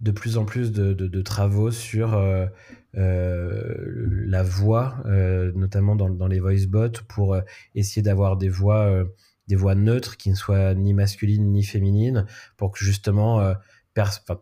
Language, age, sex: French, 30-49, male